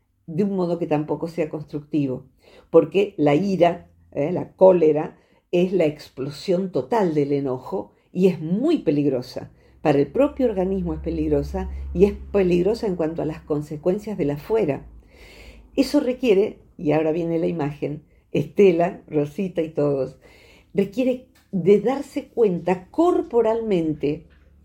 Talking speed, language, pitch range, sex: 135 wpm, Spanish, 155-220 Hz, female